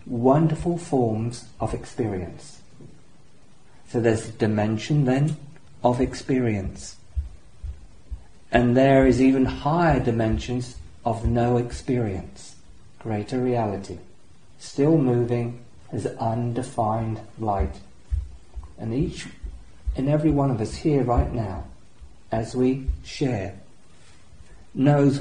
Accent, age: British, 40-59